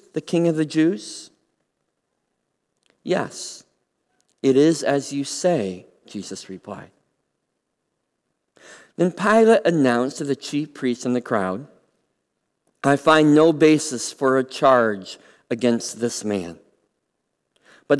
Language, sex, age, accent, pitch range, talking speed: English, male, 50-69, American, 125-175 Hz, 115 wpm